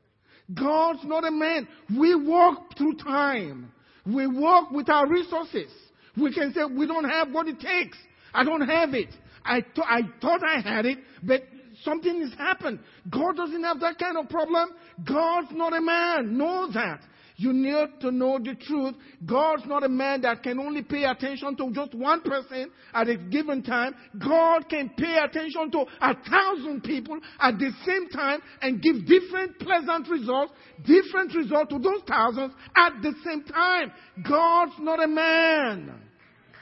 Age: 50-69